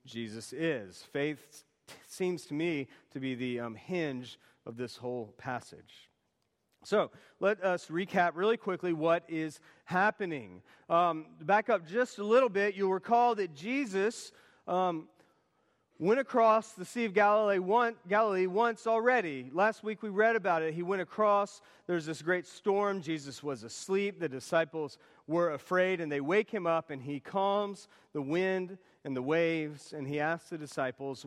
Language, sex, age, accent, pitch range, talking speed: English, male, 40-59, American, 155-210 Hz, 160 wpm